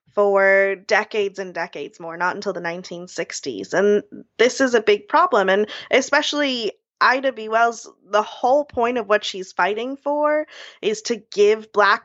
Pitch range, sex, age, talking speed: 190-240 Hz, female, 20-39, 160 wpm